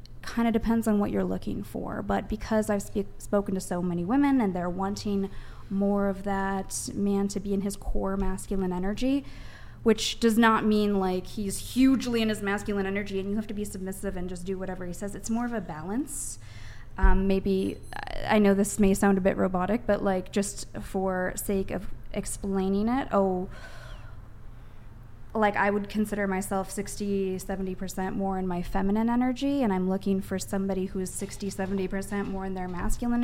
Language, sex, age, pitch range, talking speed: English, female, 20-39, 185-210 Hz, 185 wpm